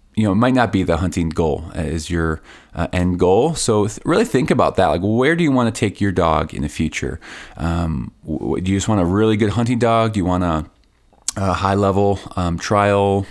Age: 20-39